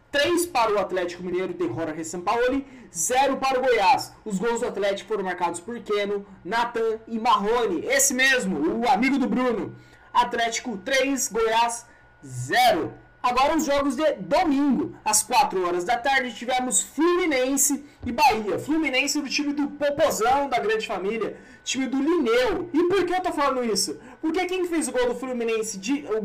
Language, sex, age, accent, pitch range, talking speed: Portuguese, male, 20-39, Brazilian, 215-295 Hz, 165 wpm